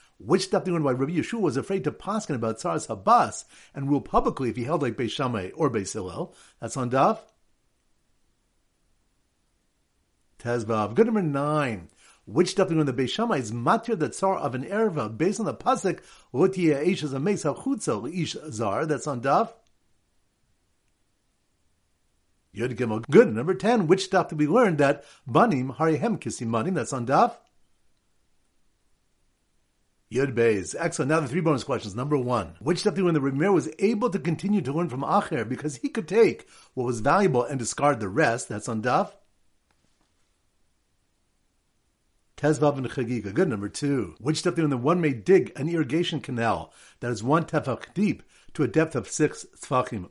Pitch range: 115-170 Hz